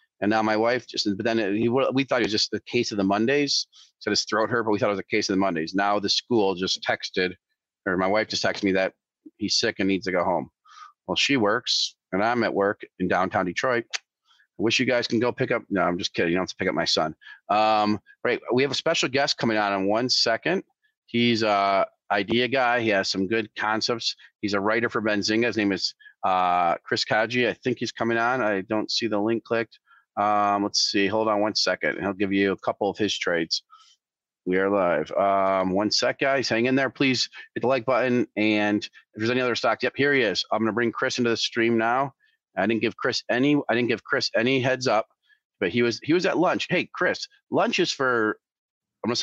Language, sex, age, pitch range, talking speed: English, male, 40-59, 105-130 Hz, 240 wpm